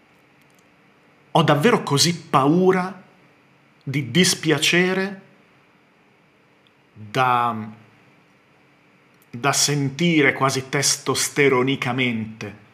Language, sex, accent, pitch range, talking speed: Italian, male, native, 120-155 Hz, 50 wpm